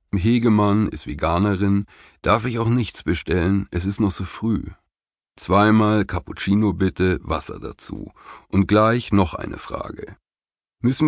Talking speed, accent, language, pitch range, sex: 130 wpm, German, German, 90-110 Hz, male